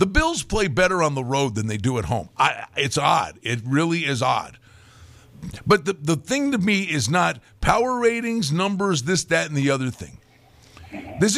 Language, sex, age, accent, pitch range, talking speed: English, male, 50-69, American, 125-190 Hz, 190 wpm